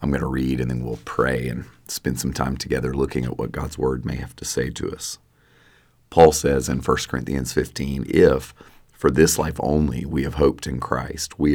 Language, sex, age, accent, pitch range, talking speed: English, male, 40-59, American, 65-75 Hz, 215 wpm